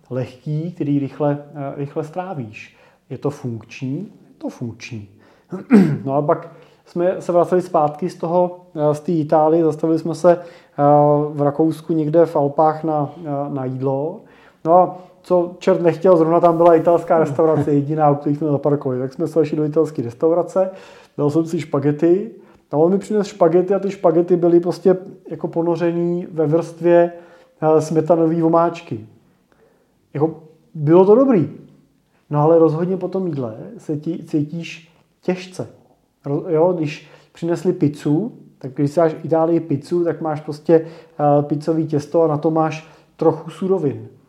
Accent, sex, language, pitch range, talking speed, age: native, male, Czech, 145-175 Hz, 150 wpm, 30-49